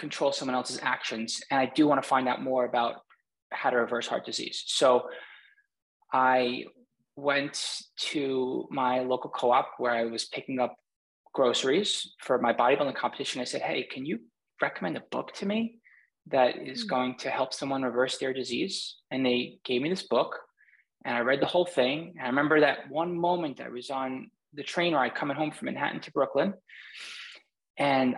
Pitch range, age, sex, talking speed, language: 125-155 Hz, 20-39, male, 185 wpm, English